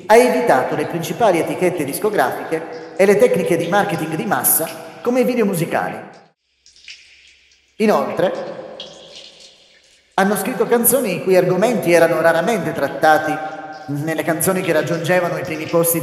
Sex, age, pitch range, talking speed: male, 30-49, 155-200 Hz, 125 wpm